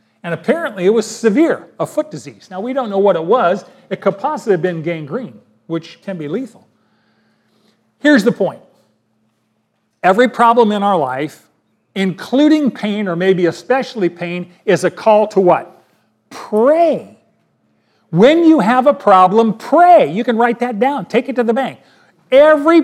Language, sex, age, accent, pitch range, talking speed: English, male, 40-59, American, 175-250 Hz, 165 wpm